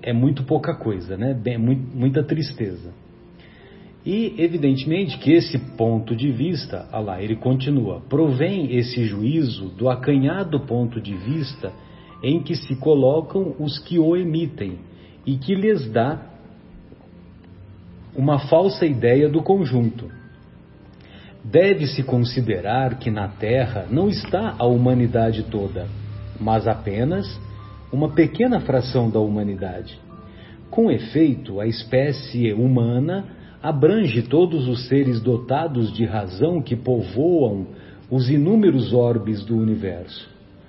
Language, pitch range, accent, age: Portuguese, 110-150 Hz, Brazilian, 40-59